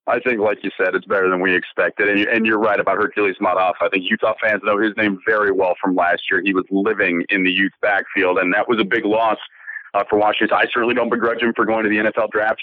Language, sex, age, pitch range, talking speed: English, male, 40-59, 100-130 Hz, 255 wpm